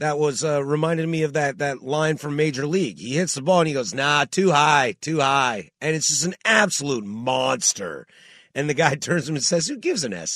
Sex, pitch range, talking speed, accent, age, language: male, 120-165 Hz, 245 wpm, American, 30-49, English